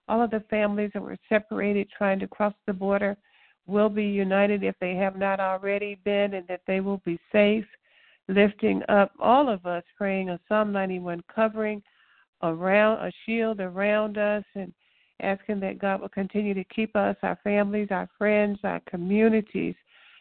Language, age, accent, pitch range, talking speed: English, 60-79, American, 190-210 Hz, 170 wpm